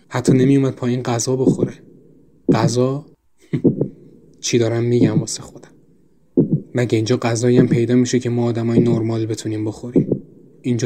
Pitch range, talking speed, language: 115-125 Hz, 125 wpm, Persian